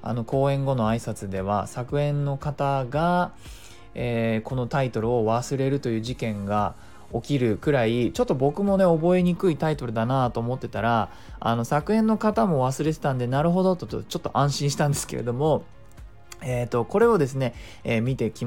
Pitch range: 115-190 Hz